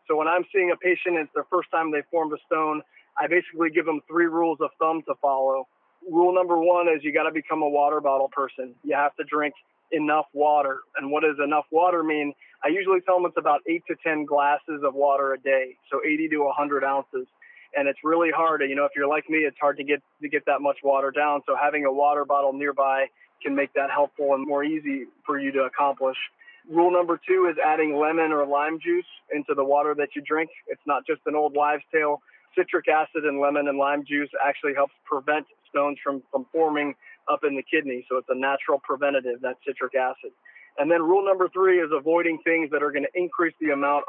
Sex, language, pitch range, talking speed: male, English, 145-165 Hz, 225 wpm